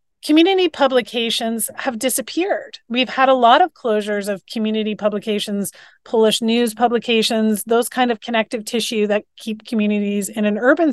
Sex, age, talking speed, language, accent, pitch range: female, 30-49, 150 wpm, English, American, 210-245 Hz